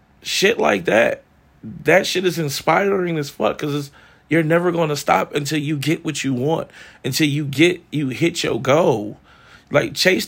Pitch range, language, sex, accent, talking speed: 120-165 Hz, English, male, American, 175 wpm